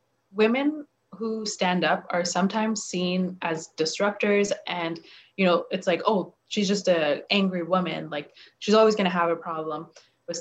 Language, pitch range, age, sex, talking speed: English, 170-210 Hz, 20-39, female, 165 wpm